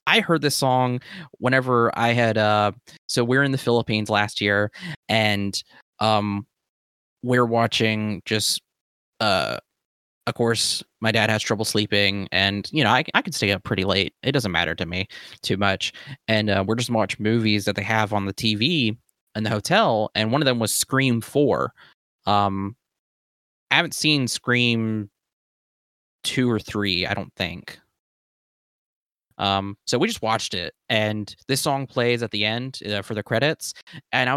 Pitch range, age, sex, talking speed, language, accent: 105-130 Hz, 20-39, male, 175 wpm, English, American